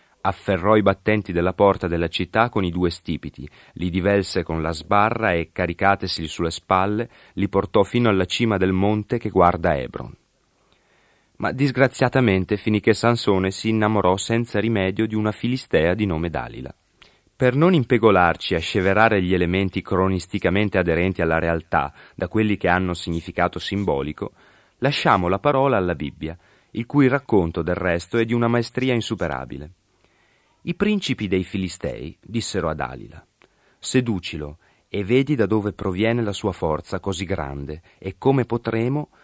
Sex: male